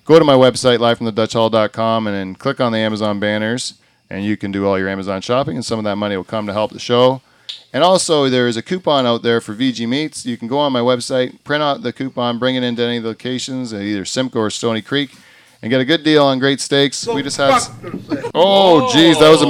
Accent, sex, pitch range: American, male, 110-135 Hz